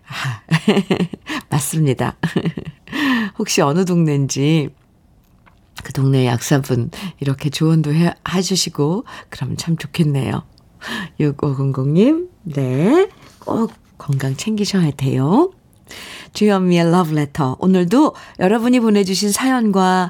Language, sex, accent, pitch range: Korean, female, native, 150-215 Hz